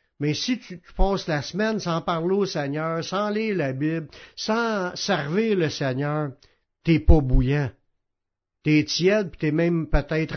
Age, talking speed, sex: 60-79, 155 wpm, male